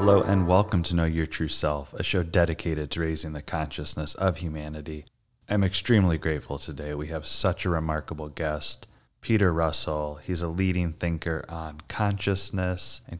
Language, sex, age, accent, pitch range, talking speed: English, male, 20-39, American, 80-95 Hz, 165 wpm